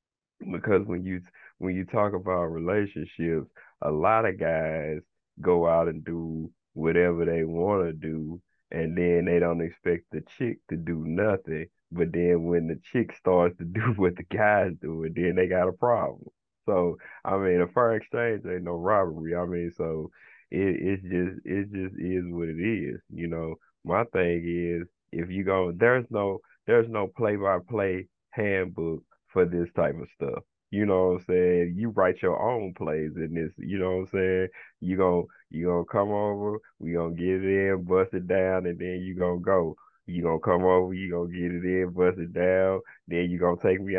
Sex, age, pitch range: male, 30-49, 85-95 Hz